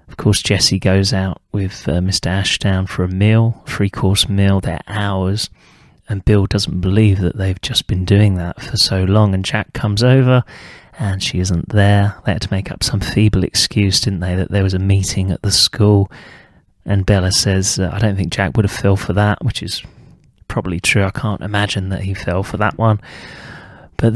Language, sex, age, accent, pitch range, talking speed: English, male, 30-49, British, 95-110 Hz, 200 wpm